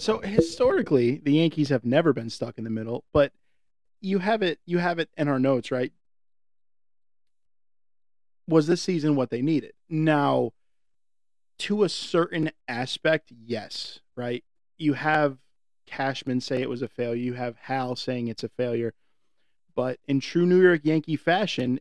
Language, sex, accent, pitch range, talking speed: English, male, American, 125-145 Hz, 155 wpm